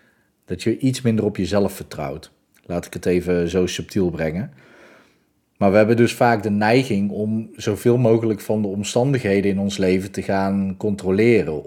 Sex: male